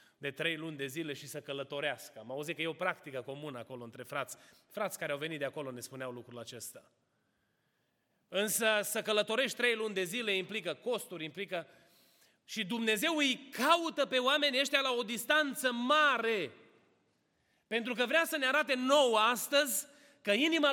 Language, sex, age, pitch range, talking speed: Romanian, male, 30-49, 195-265 Hz, 170 wpm